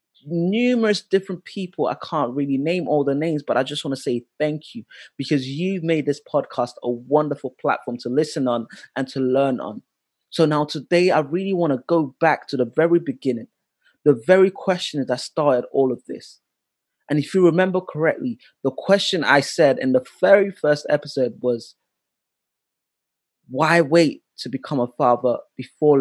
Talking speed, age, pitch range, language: 175 wpm, 20-39, 130-165 Hz, English